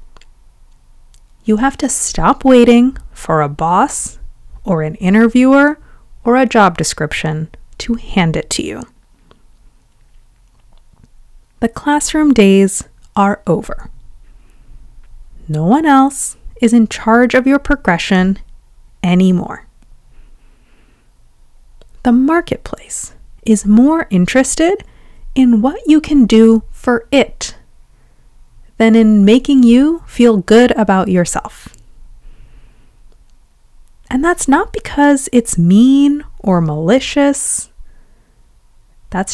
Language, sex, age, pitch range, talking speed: English, female, 30-49, 160-255 Hz, 100 wpm